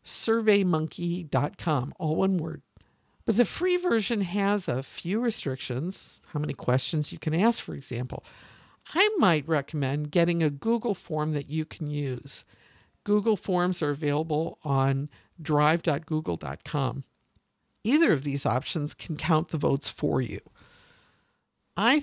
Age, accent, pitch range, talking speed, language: 50-69, American, 145-200 Hz, 130 wpm, English